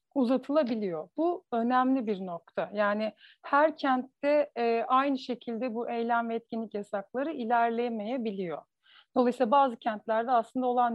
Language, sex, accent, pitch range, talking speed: Turkish, female, native, 220-265 Hz, 115 wpm